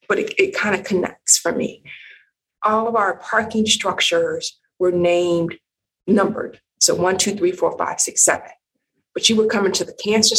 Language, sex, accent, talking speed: English, female, American, 175 wpm